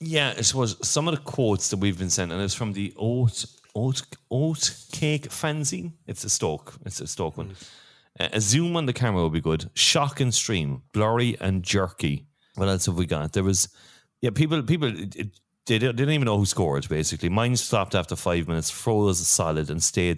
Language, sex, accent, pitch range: English, male, Irish, 95-135 Hz